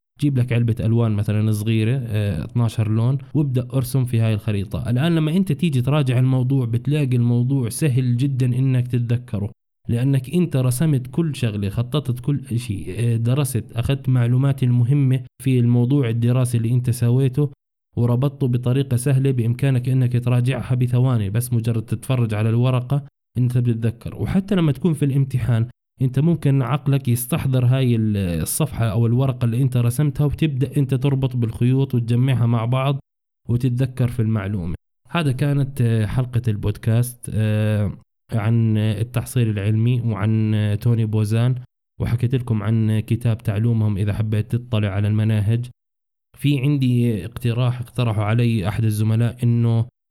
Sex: male